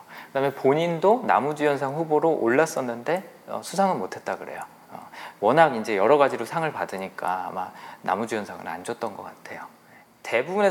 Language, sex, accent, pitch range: Korean, male, native, 125-175 Hz